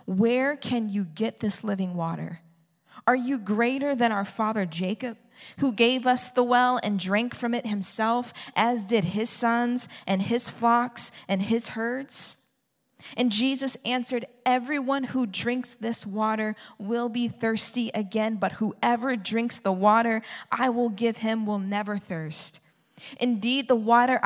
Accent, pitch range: American, 205-250 Hz